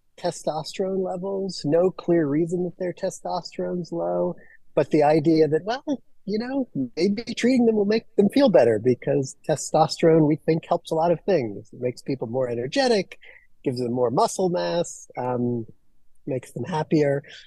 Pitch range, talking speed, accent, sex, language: 135-185 Hz, 165 wpm, American, male, English